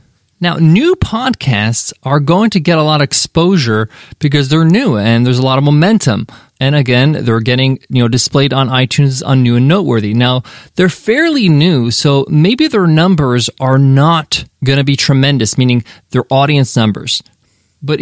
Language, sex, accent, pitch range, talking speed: English, male, American, 135-185 Hz, 175 wpm